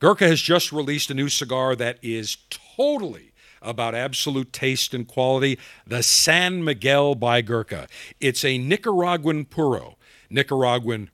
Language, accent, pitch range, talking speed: English, American, 120-175 Hz, 135 wpm